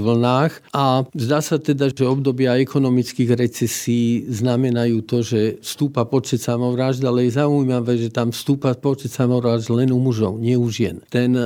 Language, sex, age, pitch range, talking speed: Slovak, male, 50-69, 120-140 Hz, 155 wpm